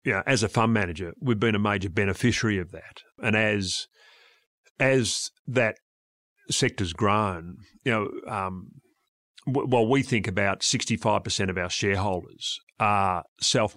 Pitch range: 100-125 Hz